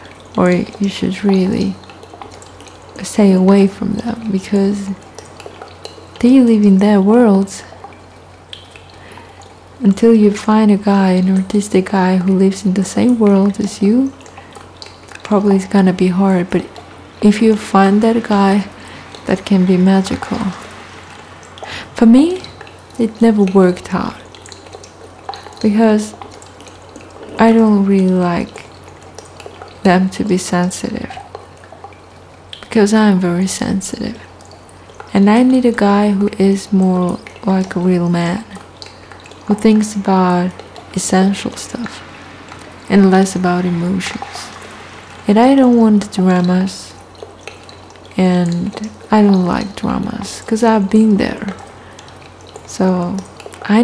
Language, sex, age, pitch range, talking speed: English, female, 20-39, 185-220 Hz, 115 wpm